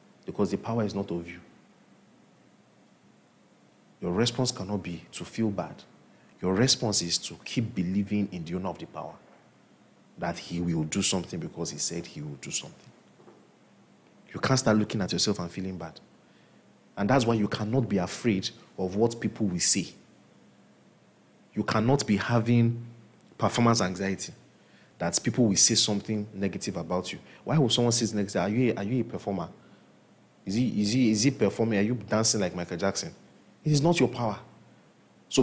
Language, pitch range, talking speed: English, 95-120 Hz, 170 wpm